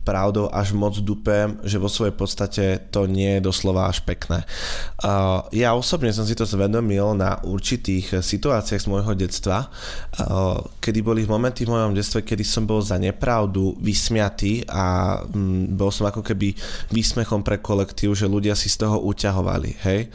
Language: Slovak